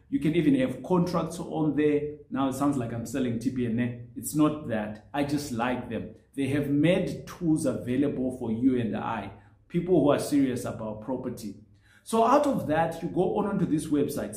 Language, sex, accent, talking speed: English, male, South African, 190 wpm